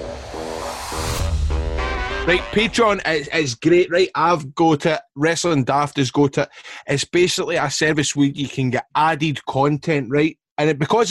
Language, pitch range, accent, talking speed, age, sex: English, 140-165 Hz, British, 150 wpm, 20-39, male